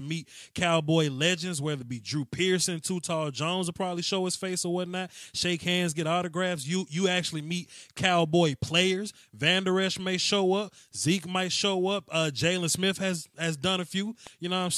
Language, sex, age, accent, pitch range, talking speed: English, male, 20-39, American, 140-180 Hz, 195 wpm